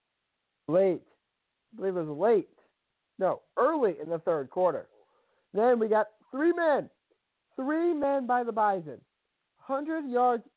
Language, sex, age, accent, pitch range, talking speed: English, male, 50-69, American, 195-275 Hz, 135 wpm